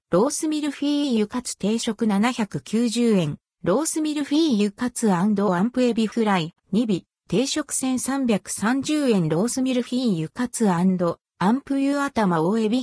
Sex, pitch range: female, 185-255 Hz